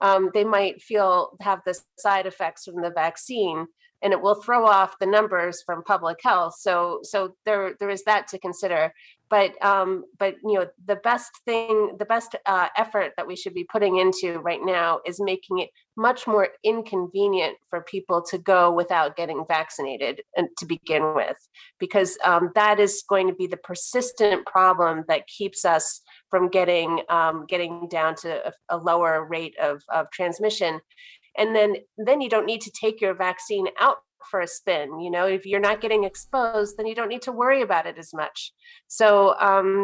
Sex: female